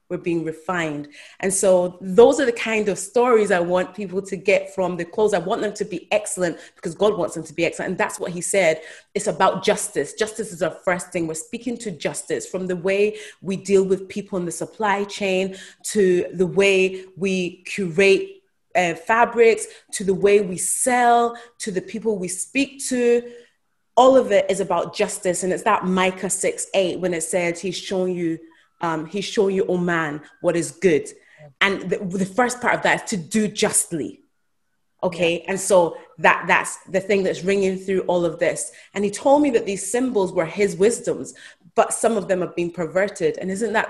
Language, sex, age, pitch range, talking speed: English, female, 30-49, 175-210 Hz, 205 wpm